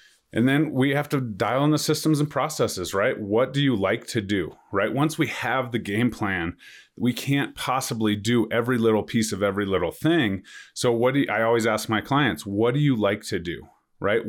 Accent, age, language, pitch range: American, 30-49, English, 105-130 Hz